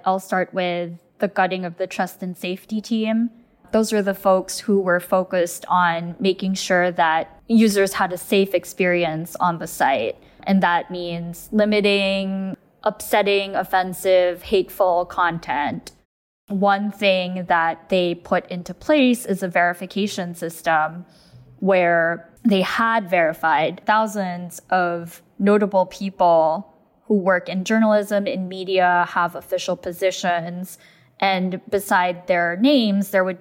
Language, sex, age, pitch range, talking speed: English, female, 10-29, 175-200 Hz, 130 wpm